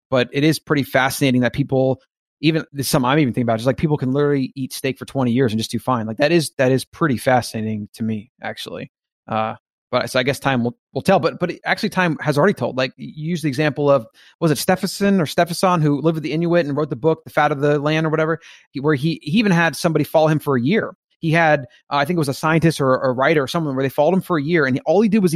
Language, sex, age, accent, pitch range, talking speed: English, male, 30-49, American, 130-160 Hz, 275 wpm